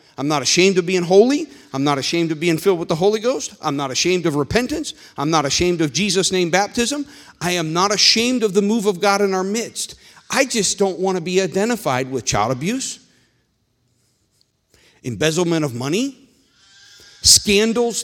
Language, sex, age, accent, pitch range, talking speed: English, male, 50-69, American, 130-195 Hz, 180 wpm